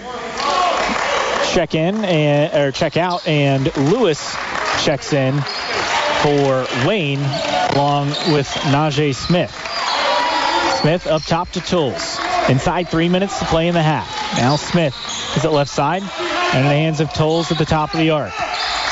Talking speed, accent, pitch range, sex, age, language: 150 wpm, American, 145-185 Hz, male, 30-49, English